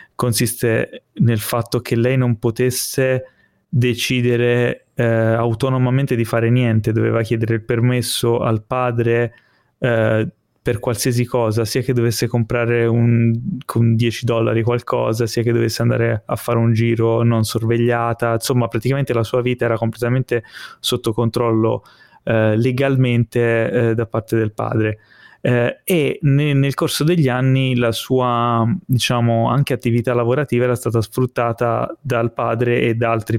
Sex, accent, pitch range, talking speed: male, native, 115-125 Hz, 140 wpm